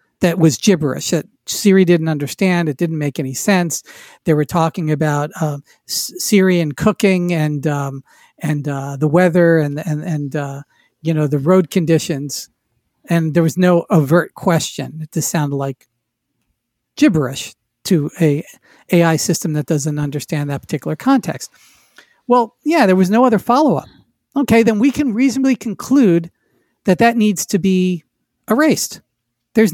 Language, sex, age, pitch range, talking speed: English, male, 50-69, 155-220 Hz, 155 wpm